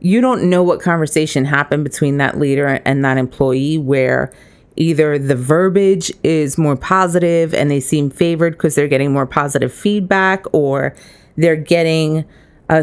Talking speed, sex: 155 wpm, female